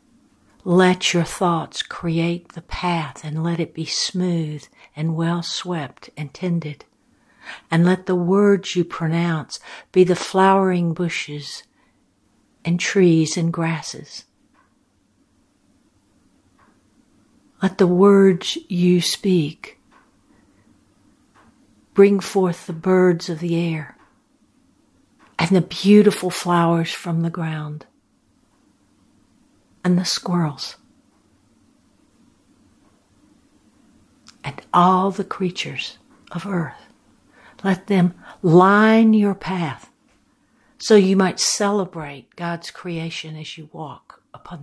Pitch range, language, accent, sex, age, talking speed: 165-190 Hz, English, American, female, 60-79, 95 wpm